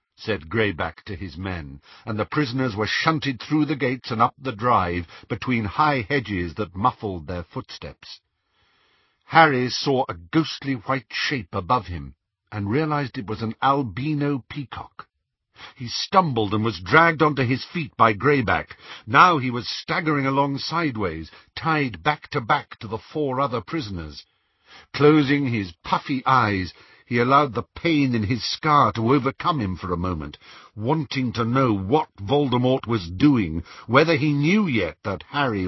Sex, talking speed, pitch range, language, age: male, 160 wpm, 100-140 Hz, English, 60-79